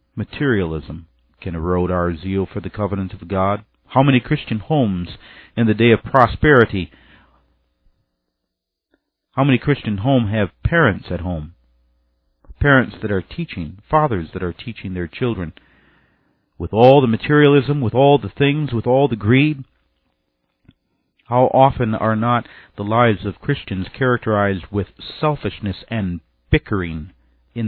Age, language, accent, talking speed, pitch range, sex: 50-69, English, American, 135 wpm, 85-120 Hz, male